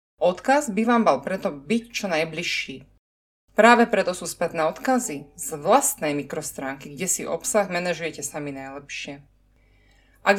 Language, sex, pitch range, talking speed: Slovak, female, 145-220 Hz, 135 wpm